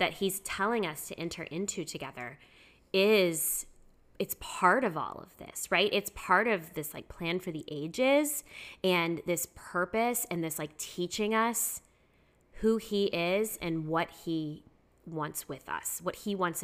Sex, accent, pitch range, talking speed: female, American, 155-190 Hz, 160 wpm